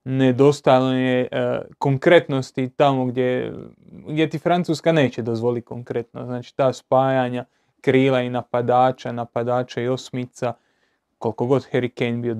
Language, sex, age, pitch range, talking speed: Croatian, male, 20-39, 120-135 Hz, 125 wpm